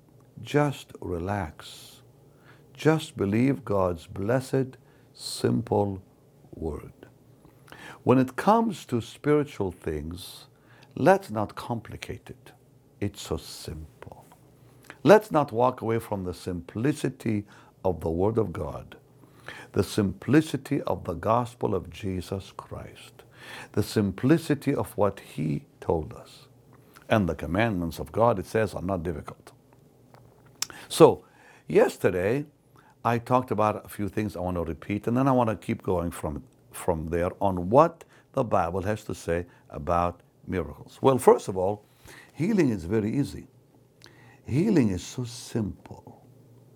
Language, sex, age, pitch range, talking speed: English, male, 60-79, 105-135 Hz, 130 wpm